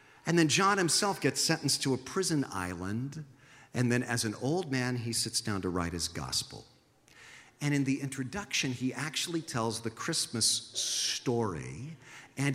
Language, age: English, 50-69